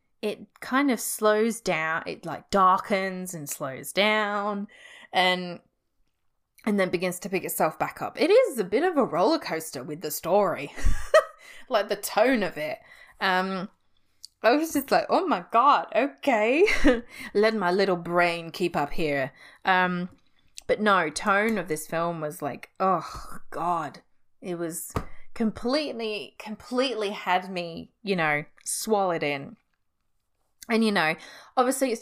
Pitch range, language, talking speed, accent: 175-235 Hz, English, 145 wpm, Australian